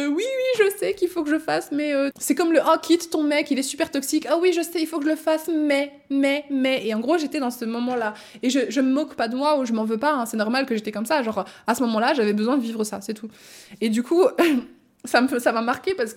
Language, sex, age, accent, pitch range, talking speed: French, female, 20-39, French, 220-285 Hz, 310 wpm